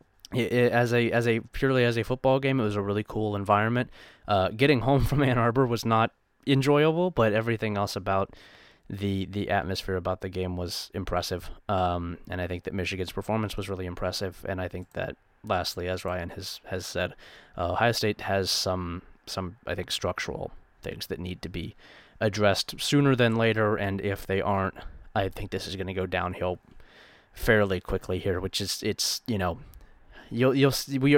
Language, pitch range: English, 95-115 Hz